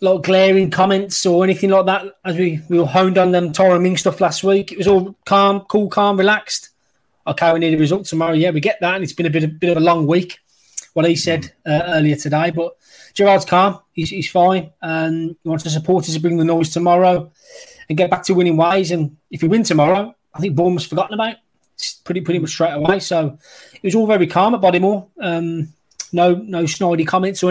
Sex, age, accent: male, 20-39, British